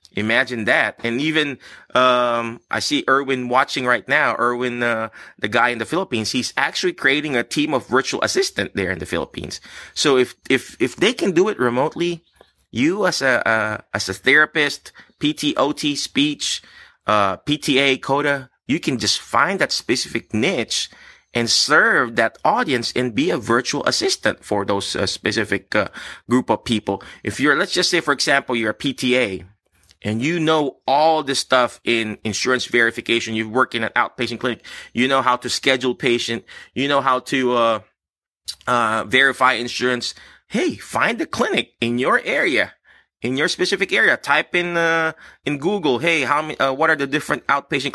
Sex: male